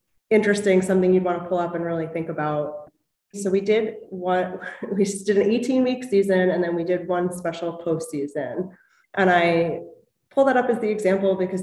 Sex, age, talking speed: female, 20-39, 190 wpm